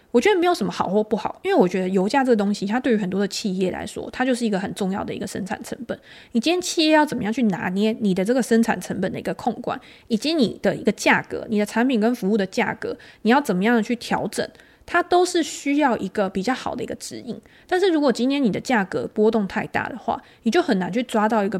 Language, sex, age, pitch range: Chinese, female, 20-39, 200-240 Hz